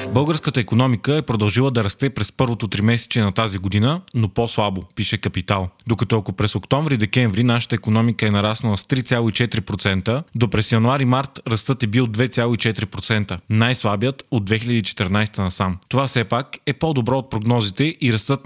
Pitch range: 110-130 Hz